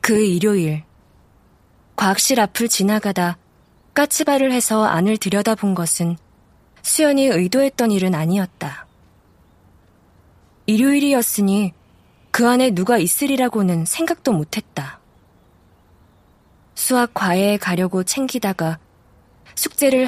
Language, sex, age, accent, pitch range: Korean, female, 20-39, native, 170-235 Hz